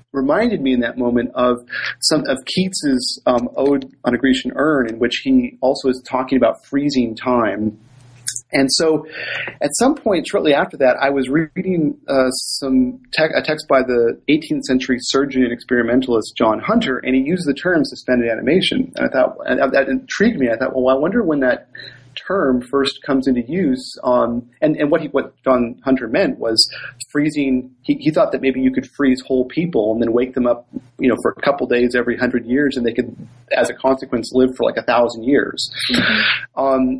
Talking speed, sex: 200 wpm, male